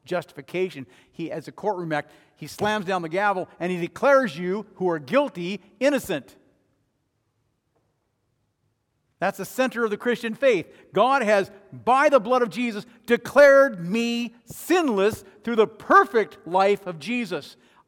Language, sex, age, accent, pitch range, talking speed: English, male, 50-69, American, 140-220 Hz, 140 wpm